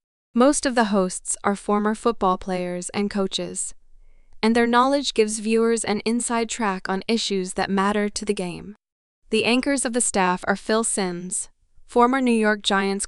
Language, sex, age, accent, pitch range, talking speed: English, female, 20-39, American, 190-225 Hz, 170 wpm